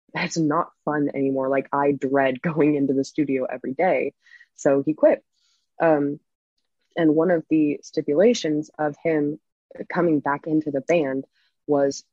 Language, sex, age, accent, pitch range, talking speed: English, female, 20-39, American, 140-160 Hz, 150 wpm